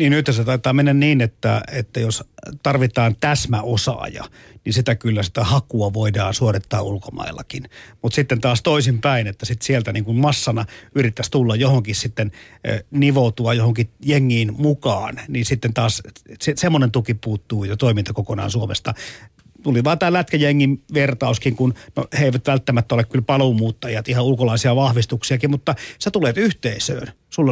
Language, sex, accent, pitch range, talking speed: Finnish, male, native, 115-145 Hz, 150 wpm